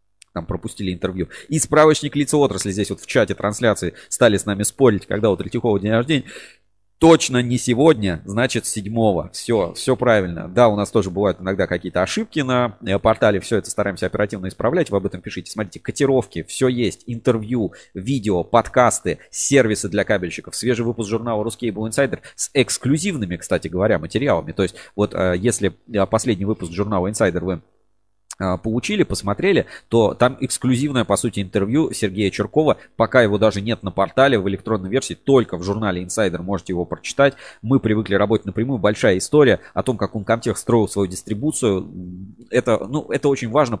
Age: 30-49